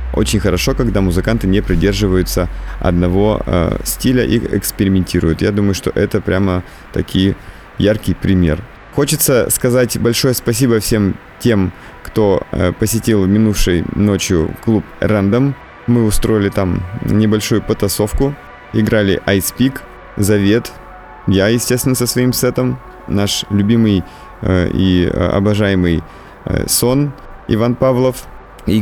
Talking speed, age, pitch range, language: 115 wpm, 30-49, 95-115 Hz, Russian